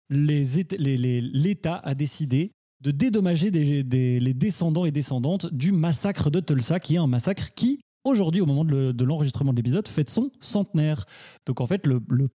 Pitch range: 130-170 Hz